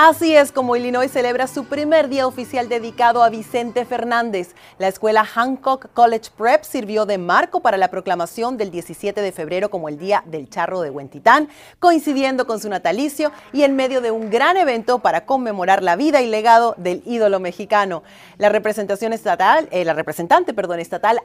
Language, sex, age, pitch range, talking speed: Spanish, female, 40-59, 185-250 Hz, 180 wpm